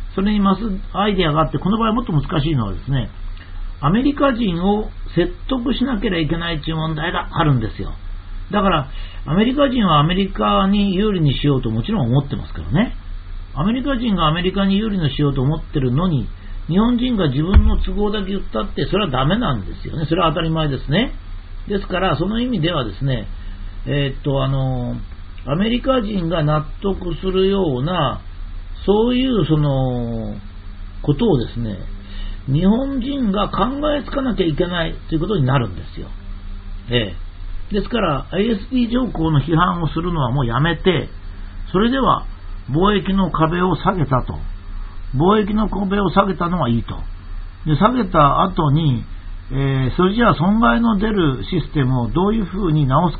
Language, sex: Japanese, male